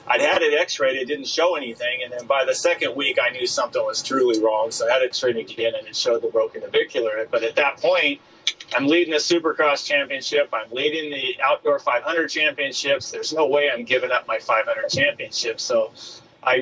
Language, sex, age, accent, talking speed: English, male, 30-49, American, 215 wpm